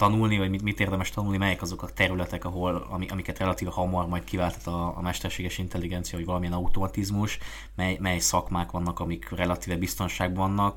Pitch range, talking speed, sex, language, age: 85-95 Hz, 180 wpm, male, Hungarian, 20-39